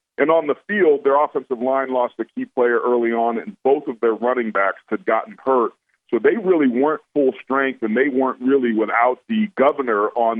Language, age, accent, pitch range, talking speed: English, 50-69, American, 115-150 Hz, 210 wpm